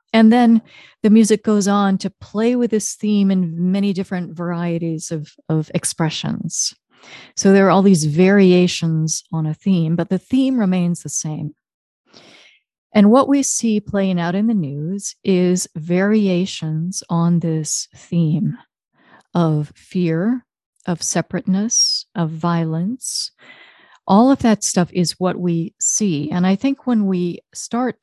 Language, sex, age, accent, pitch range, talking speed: English, female, 40-59, American, 165-205 Hz, 145 wpm